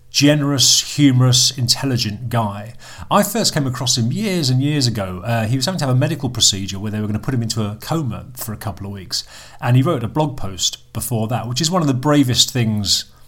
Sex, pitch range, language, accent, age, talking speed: male, 110-140 Hz, English, British, 40-59, 235 wpm